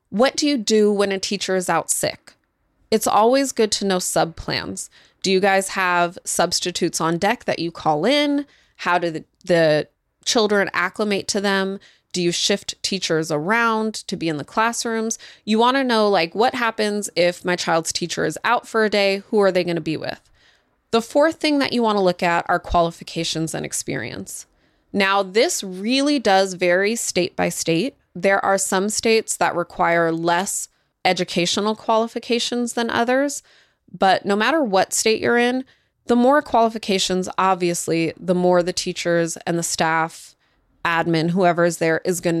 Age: 20-39